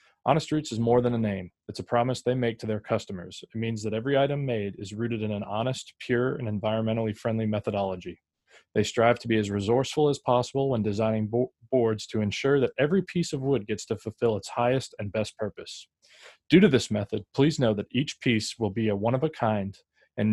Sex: male